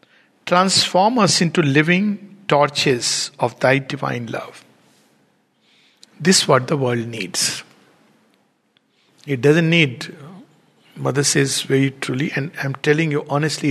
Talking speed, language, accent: 120 wpm, English, Indian